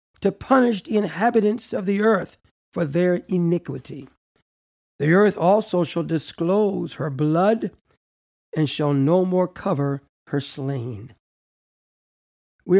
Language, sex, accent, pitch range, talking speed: English, male, American, 135-185 Hz, 115 wpm